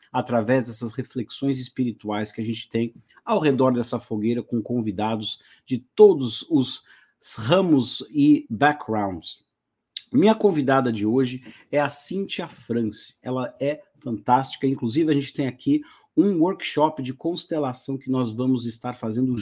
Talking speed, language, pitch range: 140 wpm, English, 120-155 Hz